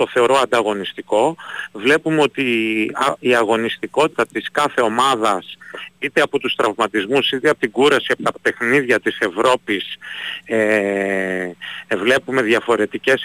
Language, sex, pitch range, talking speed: Greek, male, 115-160 Hz, 120 wpm